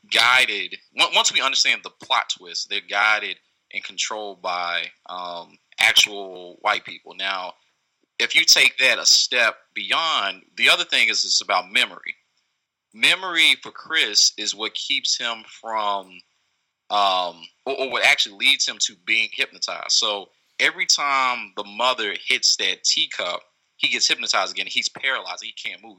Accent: American